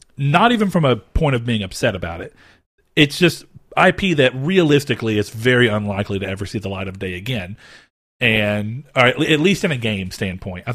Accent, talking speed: American, 190 wpm